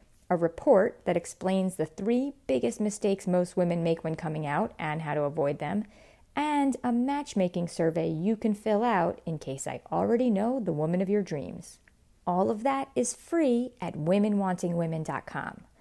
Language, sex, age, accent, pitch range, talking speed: English, female, 40-59, American, 165-235 Hz, 165 wpm